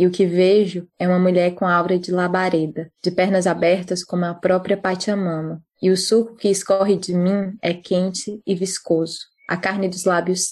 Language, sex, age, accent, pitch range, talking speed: Portuguese, female, 20-39, Brazilian, 175-195 Hz, 190 wpm